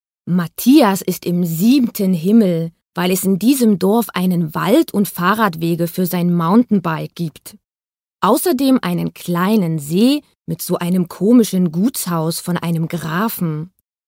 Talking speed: 130 wpm